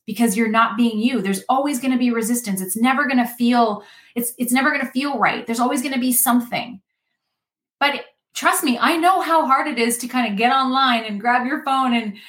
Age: 30-49